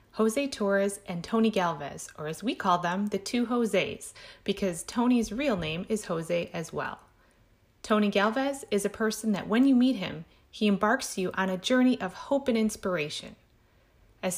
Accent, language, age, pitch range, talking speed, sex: American, English, 30-49, 185-230 Hz, 175 wpm, female